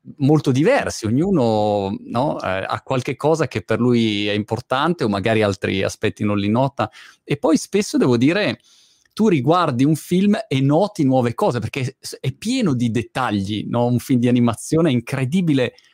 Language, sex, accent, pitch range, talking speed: Italian, male, native, 110-160 Hz, 160 wpm